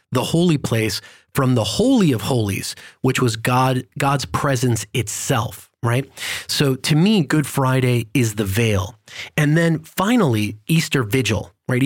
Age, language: 30-49, English